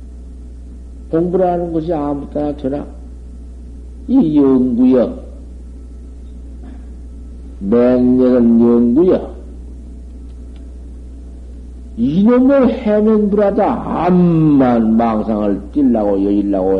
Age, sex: 60-79, male